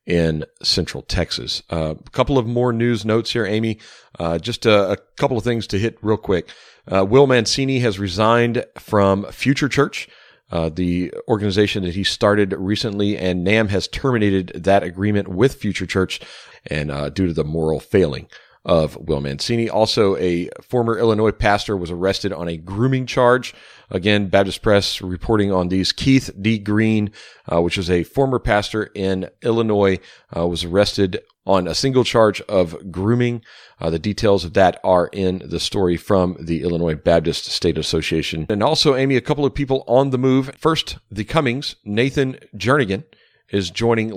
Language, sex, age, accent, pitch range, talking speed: English, male, 40-59, American, 95-120 Hz, 170 wpm